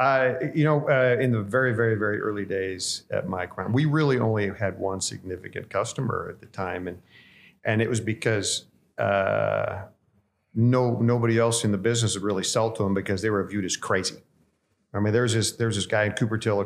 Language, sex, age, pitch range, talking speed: English, male, 50-69, 100-120 Hz, 200 wpm